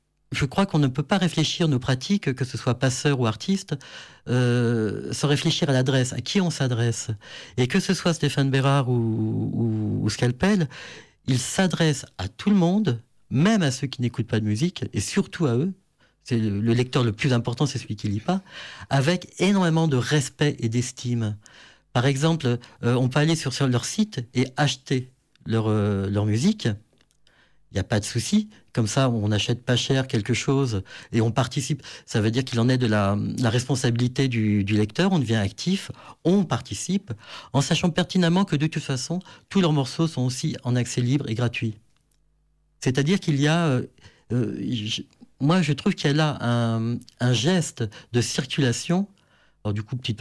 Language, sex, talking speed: French, male, 190 wpm